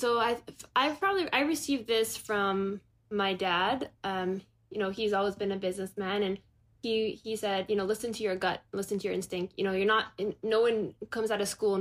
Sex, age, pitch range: female, 10-29, 185-215 Hz